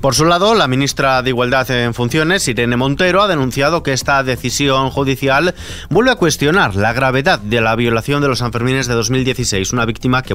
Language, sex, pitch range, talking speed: Spanish, male, 120-165 Hz, 190 wpm